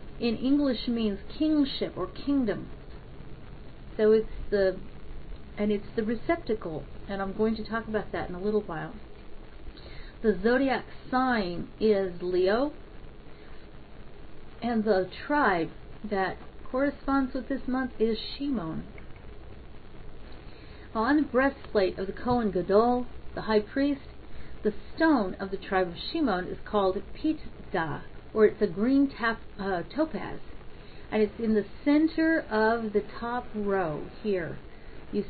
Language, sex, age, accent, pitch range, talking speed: English, female, 40-59, American, 195-255 Hz, 130 wpm